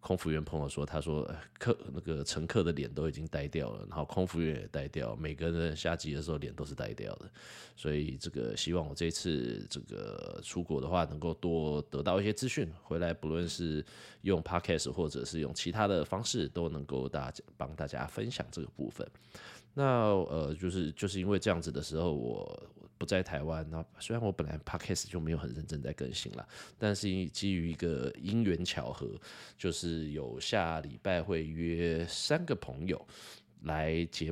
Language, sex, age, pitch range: Chinese, male, 20-39, 75-90 Hz